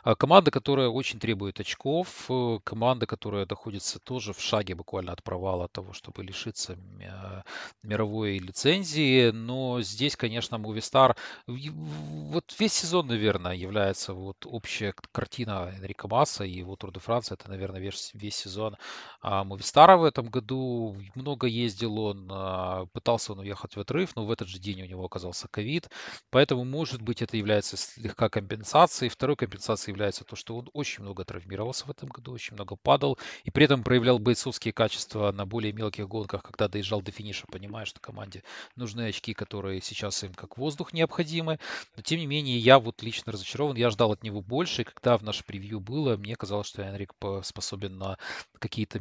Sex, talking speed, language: male, 170 wpm, Russian